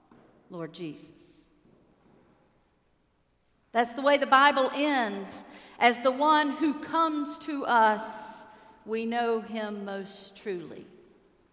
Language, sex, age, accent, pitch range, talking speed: English, female, 40-59, American, 195-285 Hz, 105 wpm